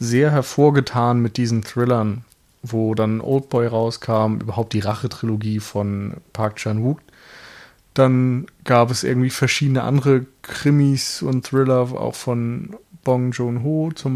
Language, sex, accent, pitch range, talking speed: German, male, German, 115-135 Hz, 125 wpm